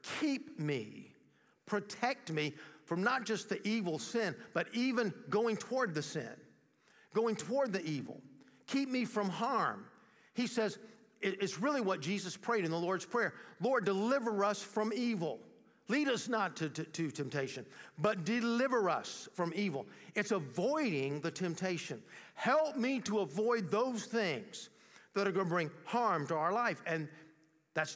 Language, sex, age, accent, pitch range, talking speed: English, male, 50-69, American, 170-230 Hz, 155 wpm